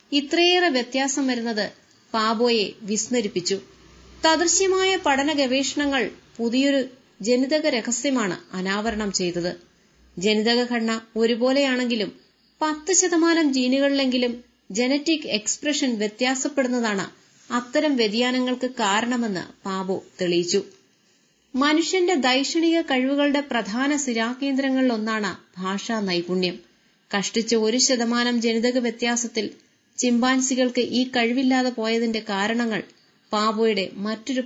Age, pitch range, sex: 30-49, 220-275 Hz, female